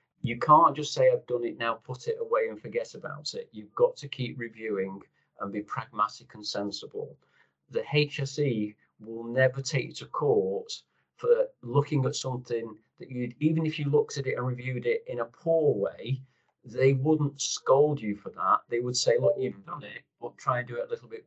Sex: male